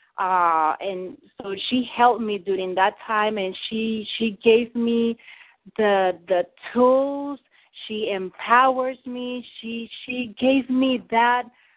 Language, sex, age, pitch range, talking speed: English, female, 30-49, 180-230 Hz, 125 wpm